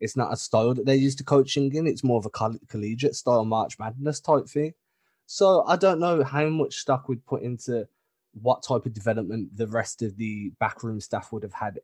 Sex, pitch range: male, 105-130 Hz